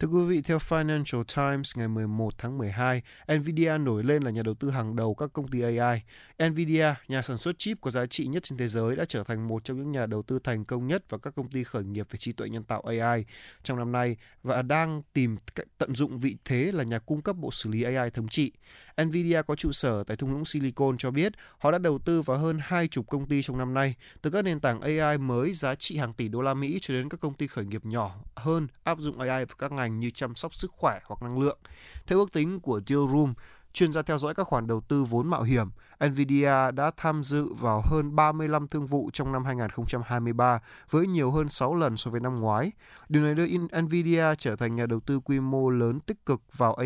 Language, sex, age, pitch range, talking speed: Vietnamese, male, 20-39, 120-150 Hz, 245 wpm